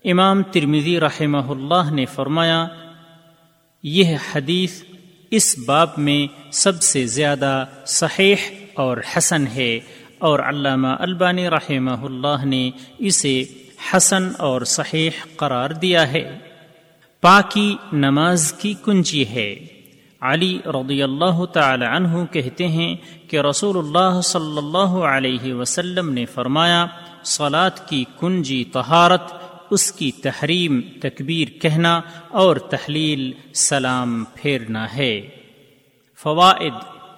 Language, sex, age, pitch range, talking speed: Urdu, male, 40-59, 135-180 Hz, 110 wpm